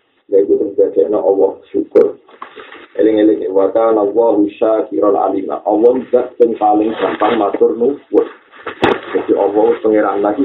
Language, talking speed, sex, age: Indonesian, 110 wpm, male, 50-69